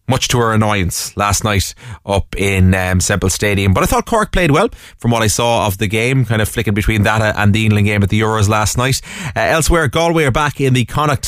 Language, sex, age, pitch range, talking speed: English, male, 30-49, 100-125 Hz, 245 wpm